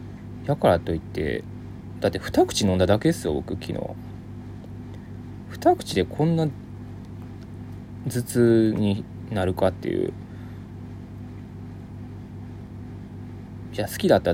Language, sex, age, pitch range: Japanese, male, 20-39, 90-110 Hz